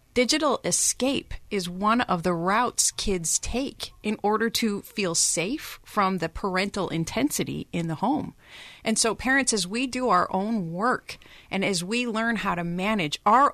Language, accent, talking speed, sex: English, American, 170 wpm, female